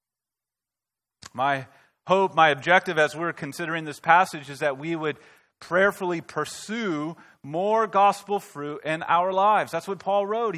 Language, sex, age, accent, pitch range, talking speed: English, male, 30-49, American, 155-215 Hz, 140 wpm